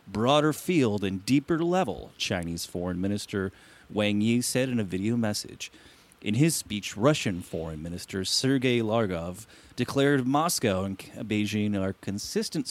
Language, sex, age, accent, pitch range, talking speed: English, male, 30-49, American, 95-130 Hz, 135 wpm